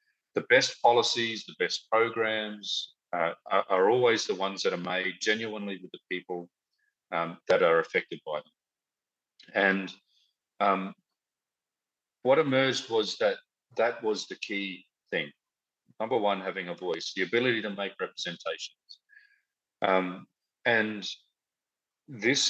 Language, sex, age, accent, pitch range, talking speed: English, male, 40-59, Australian, 95-150 Hz, 130 wpm